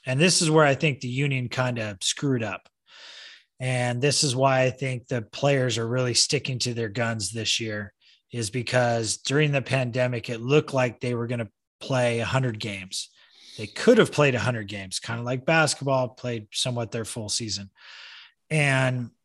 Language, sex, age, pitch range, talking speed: English, male, 30-49, 125-150 Hz, 190 wpm